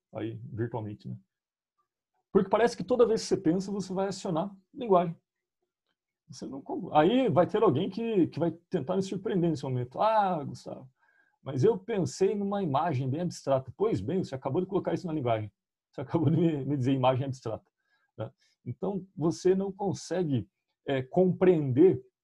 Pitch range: 135-190 Hz